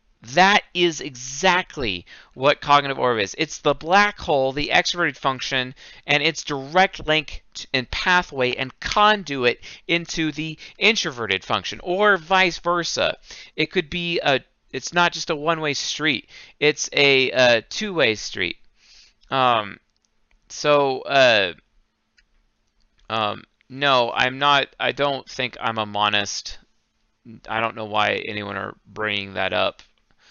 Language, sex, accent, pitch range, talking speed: English, male, American, 110-155 Hz, 130 wpm